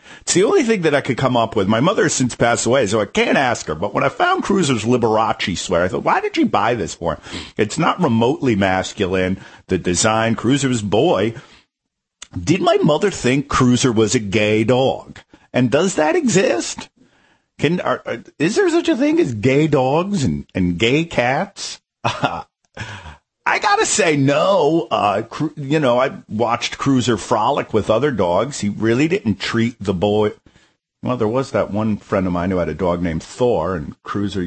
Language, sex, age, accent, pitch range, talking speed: English, male, 50-69, American, 100-155 Hz, 190 wpm